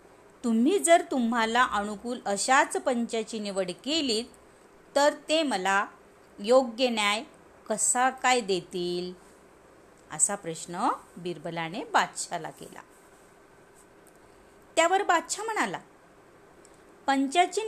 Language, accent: Marathi, native